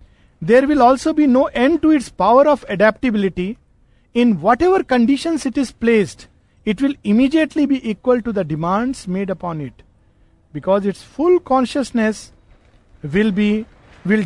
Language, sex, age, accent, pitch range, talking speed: Hindi, male, 50-69, native, 175-250 Hz, 145 wpm